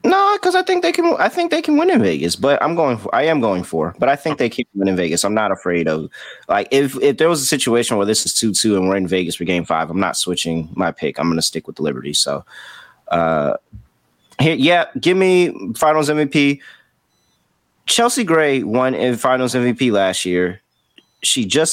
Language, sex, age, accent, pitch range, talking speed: English, male, 20-39, American, 90-125 Hz, 225 wpm